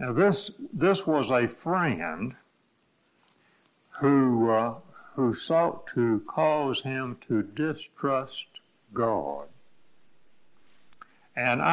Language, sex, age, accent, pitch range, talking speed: English, male, 60-79, American, 120-155 Hz, 85 wpm